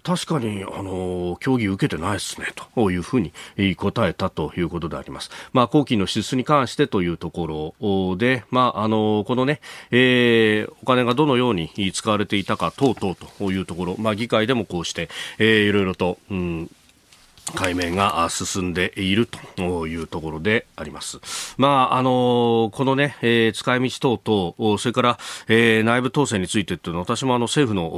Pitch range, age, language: 100-150 Hz, 40-59, Japanese